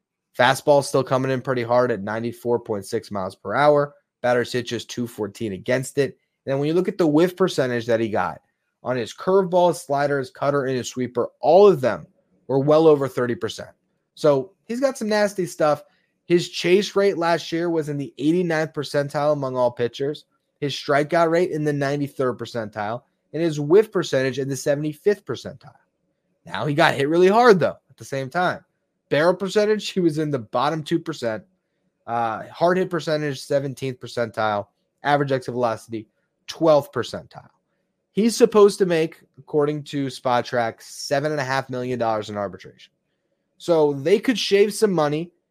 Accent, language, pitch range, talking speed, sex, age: American, English, 130-170 Hz, 165 wpm, male, 20-39